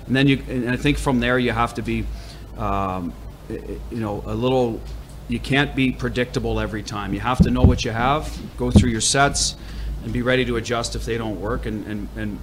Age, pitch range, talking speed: 40-59, 105-125 Hz, 220 wpm